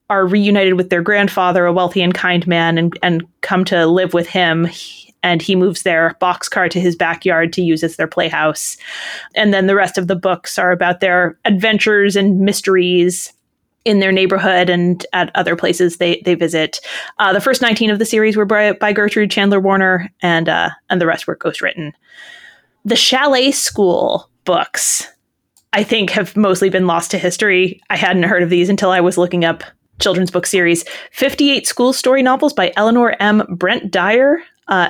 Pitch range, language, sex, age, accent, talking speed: 180-215 Hz, English, female, 20-39, American, 185 wpm